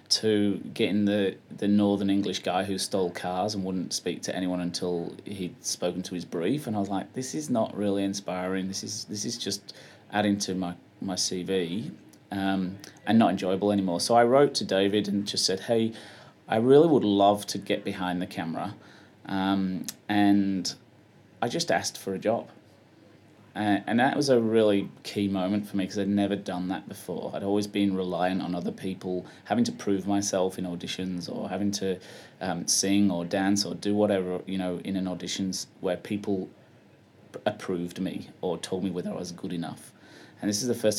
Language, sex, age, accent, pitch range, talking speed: English, male, 30-49, British, 95-105 Hz, 195 wpm